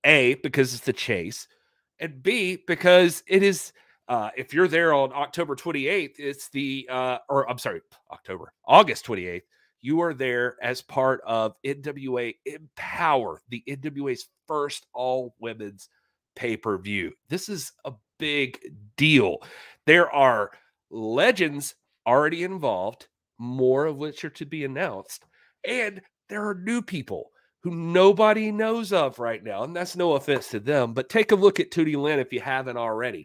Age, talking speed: 30-49, 150 wpm